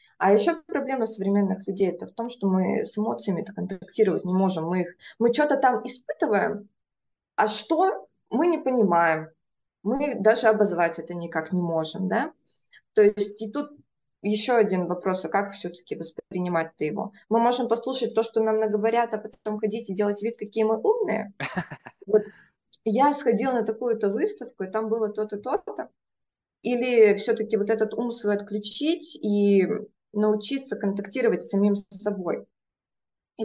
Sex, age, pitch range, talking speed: female, 20-39, 190-230 Hz, 155 wpm